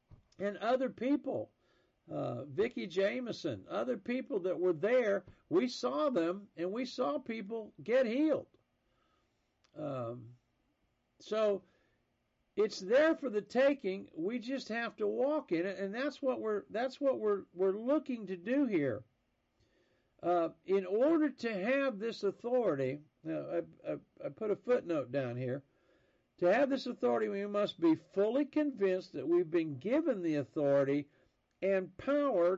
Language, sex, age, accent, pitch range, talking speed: English, male, 50-69, American, 175-260 Hz, 145 wpm